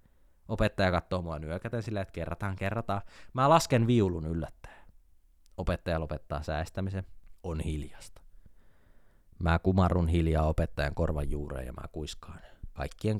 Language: Finnish